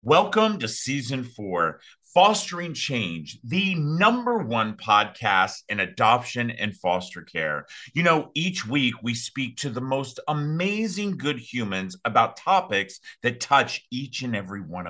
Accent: American